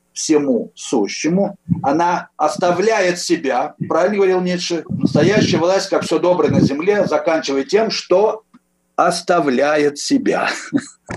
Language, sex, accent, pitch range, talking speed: Russian, male, native, 145-195 Hz, 115 wpm